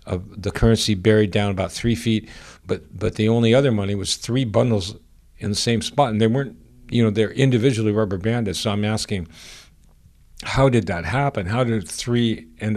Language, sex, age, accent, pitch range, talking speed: English, male, 50-69, American, 100-120 Hz, 190 wpm